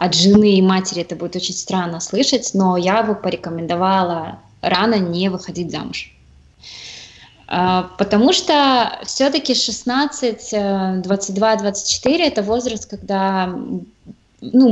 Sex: female